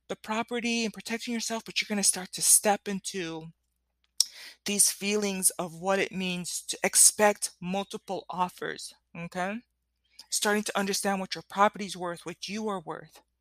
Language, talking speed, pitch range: English, 155 wpm, 175-215 Hz